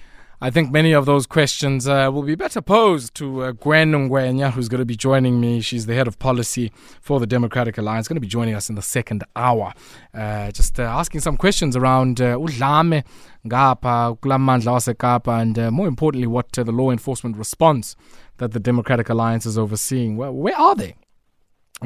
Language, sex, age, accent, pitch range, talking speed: English, male, 20-39, South African, 120-160 Hz, 200 wpm